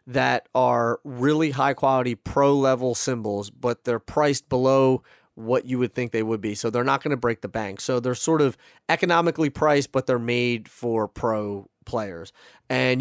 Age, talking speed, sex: 30-49, 185 wpm, male